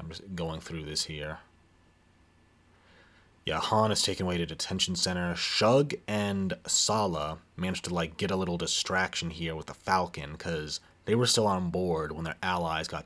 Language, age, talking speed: English, 30-49, 175 wpm